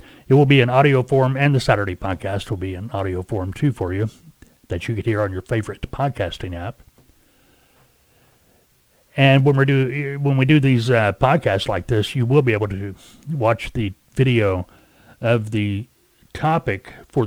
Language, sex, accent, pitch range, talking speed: English, male, American, 100-135 Hz, 170 wpm